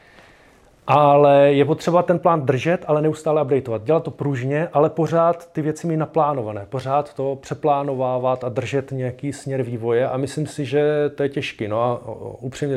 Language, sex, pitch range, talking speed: Czech, male, 110-140 Hz, 170 wpm